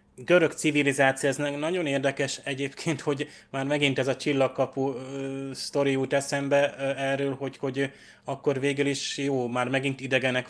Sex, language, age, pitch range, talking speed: male, Hungarian, 20-39, 125-140 Hz, 145 wpm